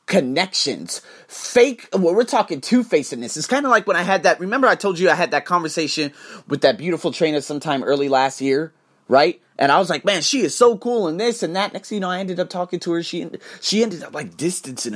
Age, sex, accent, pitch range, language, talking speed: 30-49, male, American, 155-220 Hz, English, 245 wpm